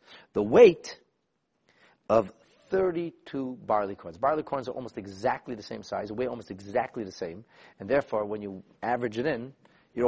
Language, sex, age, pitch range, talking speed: English, male, 40-59, 105-130 Hz, 165 wpm